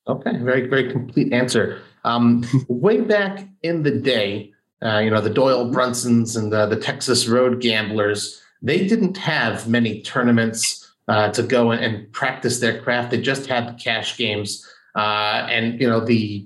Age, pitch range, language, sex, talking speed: 30-49, 115-135 Hz, English, male, 170 wpm